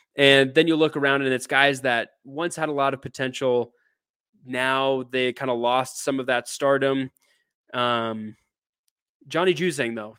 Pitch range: 120-145 Hz